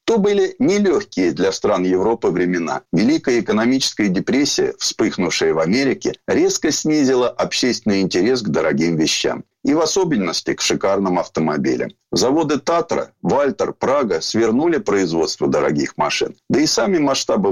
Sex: male